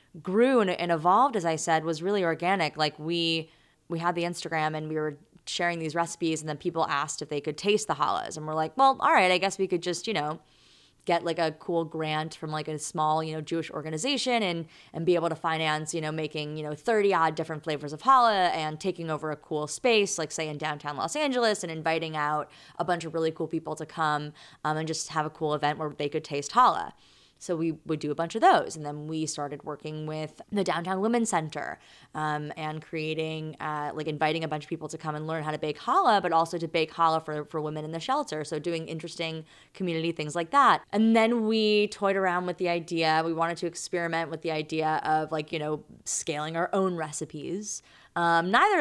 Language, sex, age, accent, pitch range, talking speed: English, female, 20-39, American, 155-175 Hz, 230 wpm